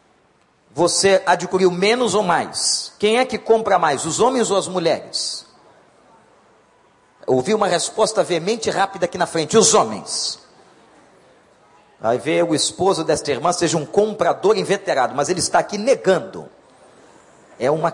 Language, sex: Portuguese, male